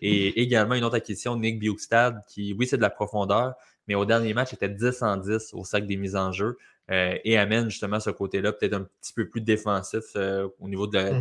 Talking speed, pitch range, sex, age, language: 240 wpm, 100-115 Hz, male, 20-39, French